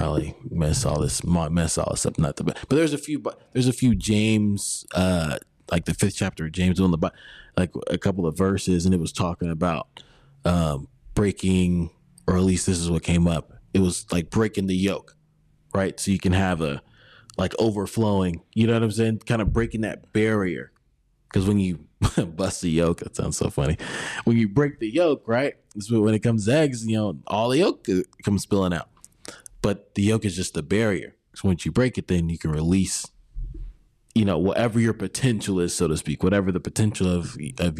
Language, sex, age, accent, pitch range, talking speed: English, male, 20-39, American, 90-115 Hz, 215 wpm